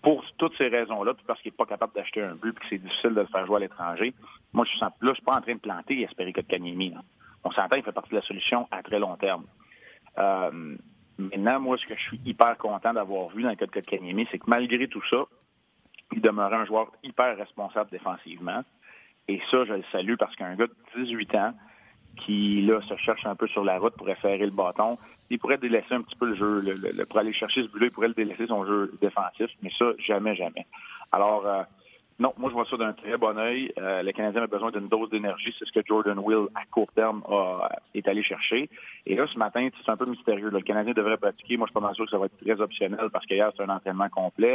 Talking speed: 250 wpm